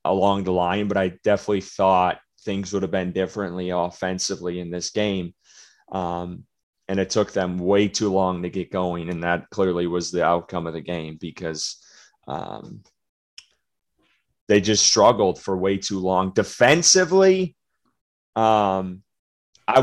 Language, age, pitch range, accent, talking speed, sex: English, 30-49, 90-110 Hz, American, 145 wpm, male